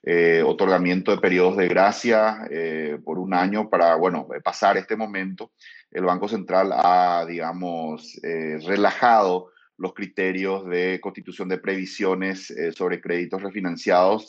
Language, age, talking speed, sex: Spanish, 30-49, 135 wpm, male